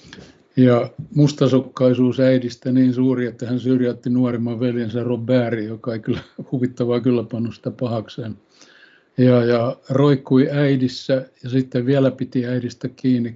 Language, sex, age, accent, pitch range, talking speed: Finnish, male, 60-79, native, 120-130 Hz, 120 wpm